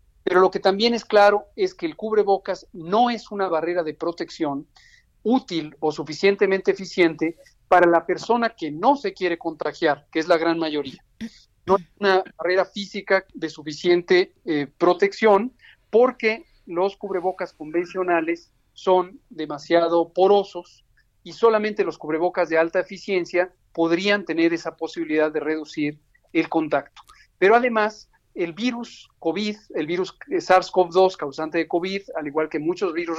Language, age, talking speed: Spanish, 50-69, 145 wpm